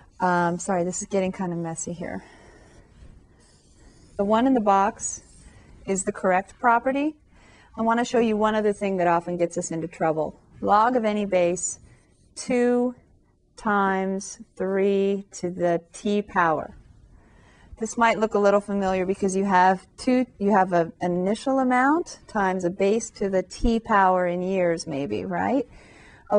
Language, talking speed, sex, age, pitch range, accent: English, 160 wpm, female, 30-49, 180-230 Hz, American